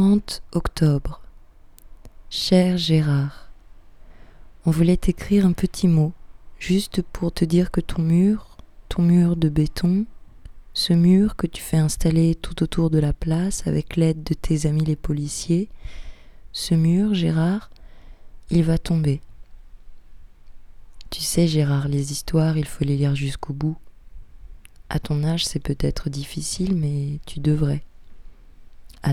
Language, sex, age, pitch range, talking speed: French, female, 20-39, 135-170 Hz, 135 wpm